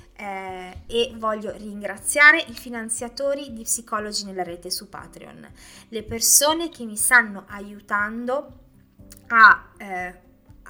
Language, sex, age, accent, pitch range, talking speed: Italian, female, 20-39, native, 190-250 Hz, 110 wpm